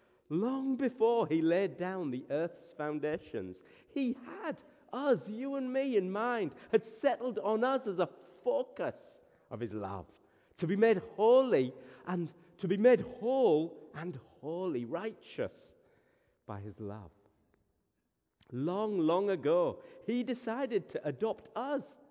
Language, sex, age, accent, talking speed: English, male, 50-69, British, 135 wpm